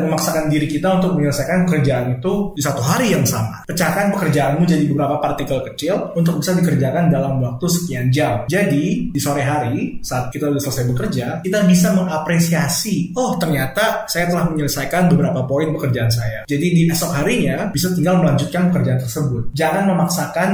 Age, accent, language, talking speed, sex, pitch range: 20-39, native, Indonesian, 165 wpm, male, 140-170 Hz